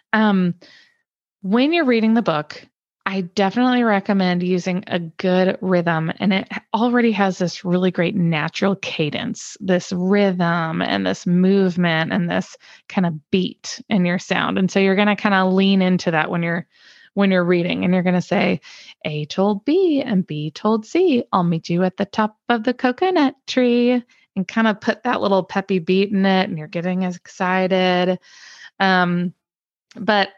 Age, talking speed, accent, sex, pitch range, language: 20-39, 175 wpm, American, female, 180-225 Hz, English